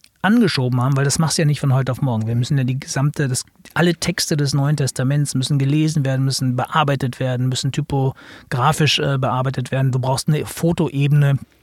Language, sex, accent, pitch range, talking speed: German, male, German, 130-170 Hz, 190 wpm